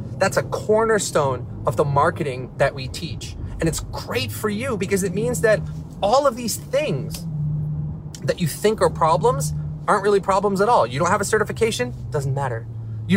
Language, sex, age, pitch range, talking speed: English, male, 30-49, 120-170 Hz, 180 wpm